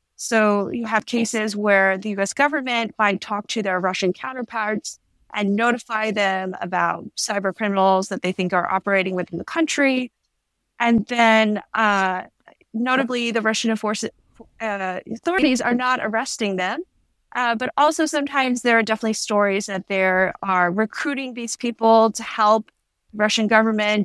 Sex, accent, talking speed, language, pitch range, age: female, American, 145 wpm, English, 195-235 Hz, 20-39